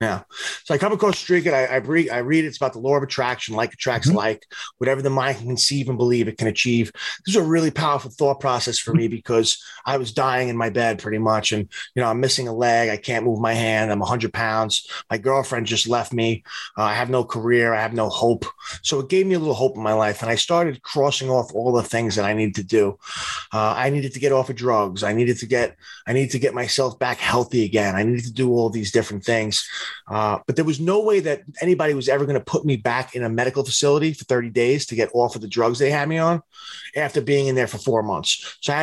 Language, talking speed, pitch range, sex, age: English, 265 wpm, 115-140 Hz, male, 30-49